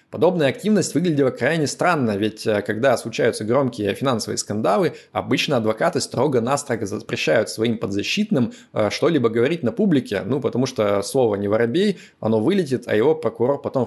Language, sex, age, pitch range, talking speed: Russian, male, 20-39, 110-150 Hz, 145 wpm